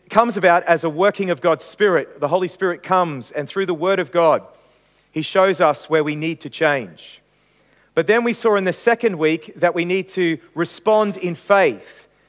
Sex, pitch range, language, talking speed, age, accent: male, 175-215 Hz, English, 205 wpm, 40-59, Australian